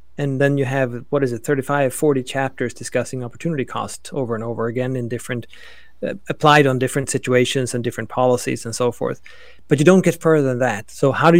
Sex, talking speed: male, 210 wpm